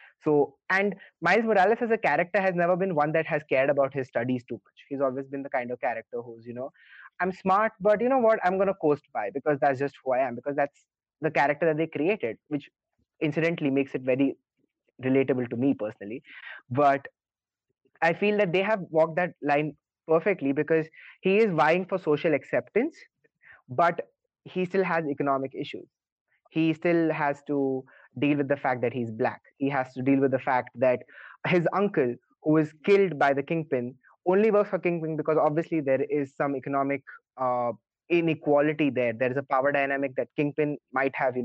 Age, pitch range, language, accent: 20-39, 135-170 Hz, English, Indian